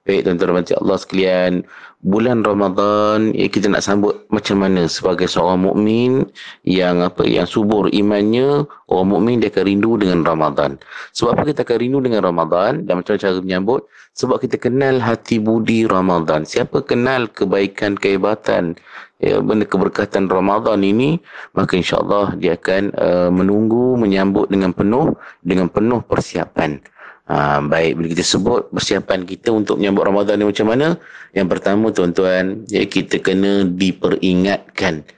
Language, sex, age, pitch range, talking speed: Malay, male, 30-49, 95-110 Hz, 140 wpm